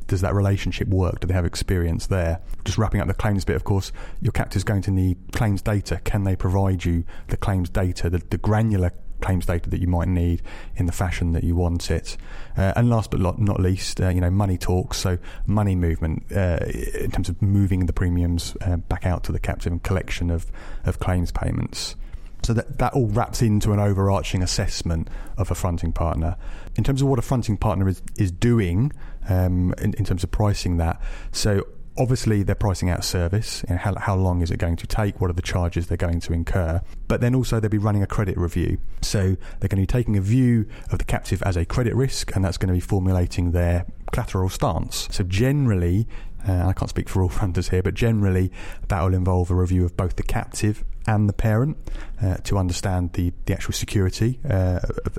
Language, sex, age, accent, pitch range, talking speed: English, male, 30-49, British, 90-105 Hz, 215 wpm